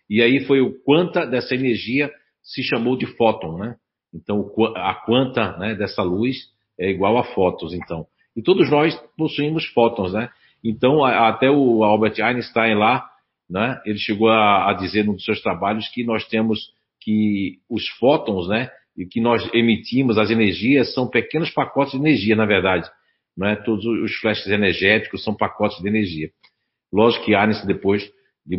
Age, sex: 50-69, male